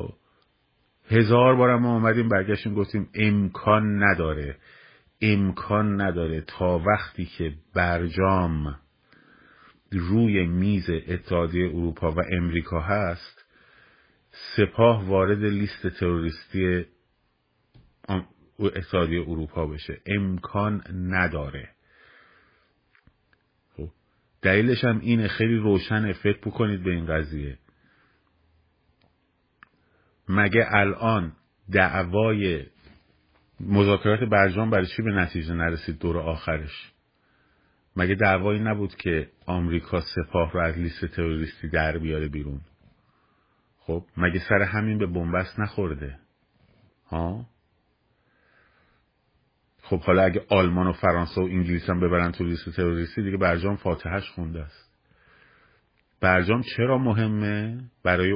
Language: Persian